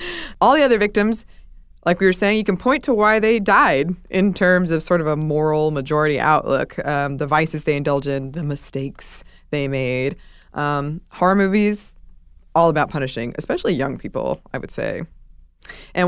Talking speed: 175 wpm